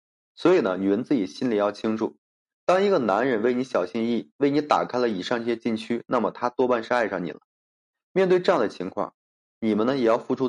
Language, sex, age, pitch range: Chinese, male, 20-39, 110-140 Hz